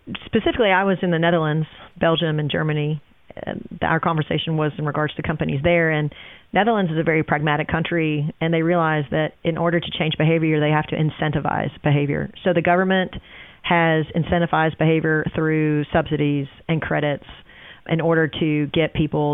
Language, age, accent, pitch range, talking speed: English, 40-59, American, 155-190 Hz, 170 wpm